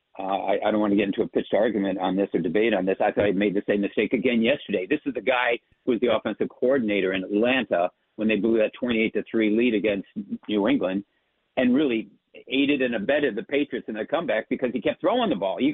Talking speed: 240 wpm